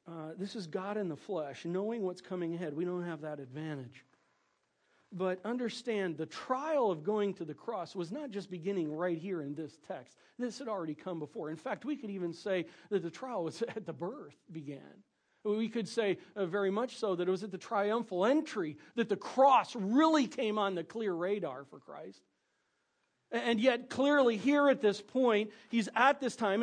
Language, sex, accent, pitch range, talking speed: English, male, American, 185-250 Hz, 200 wpm